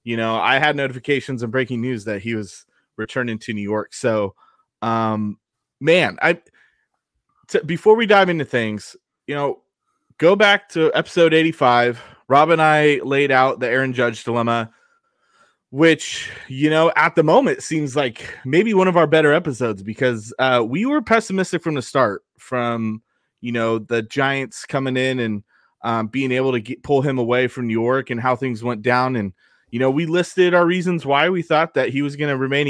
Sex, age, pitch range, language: male, 20-39, 120-160 Hz, English